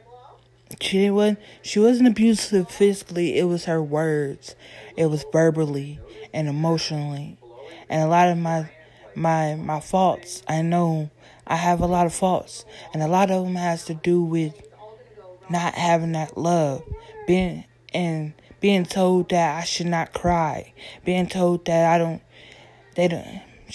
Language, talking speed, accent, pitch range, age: English, 150 wpm, American, 150-185 Hz, 20-39